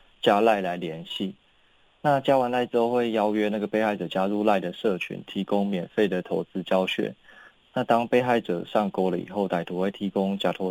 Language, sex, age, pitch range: Chinese, male, 20-39, 95-115 Hz